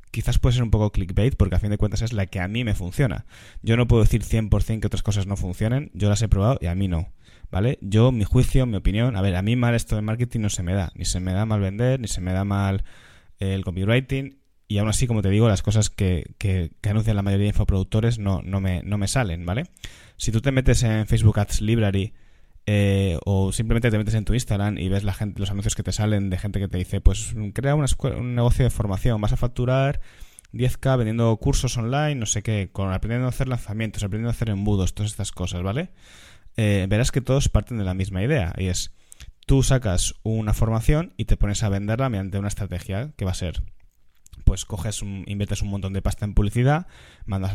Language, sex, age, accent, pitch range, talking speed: Spanish, male, 20-39, Spanish, 95-115 Hz, 240 wpm